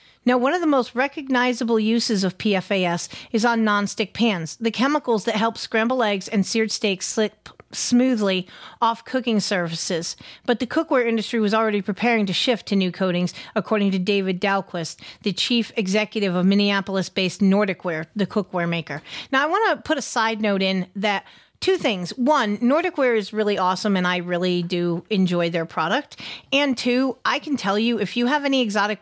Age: 40-59